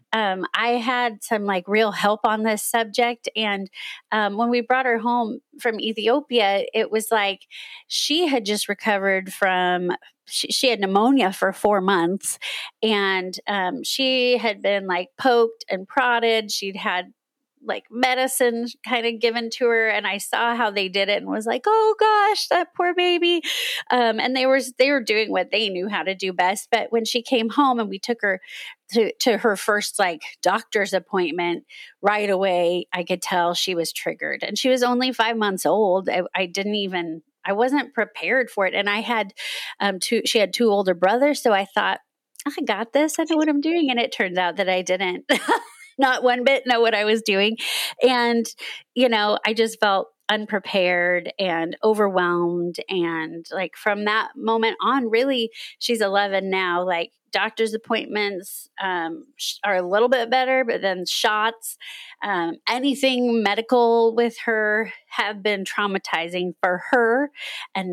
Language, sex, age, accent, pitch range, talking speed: English, female, 30-49, American, 195-250 Hz, 175 wpm